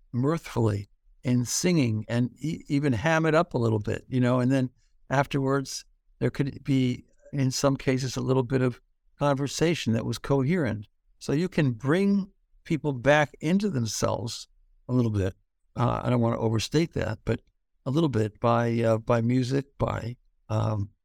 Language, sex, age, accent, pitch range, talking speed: English, male, 60-79, American, 115-135 Hz, 170 wpm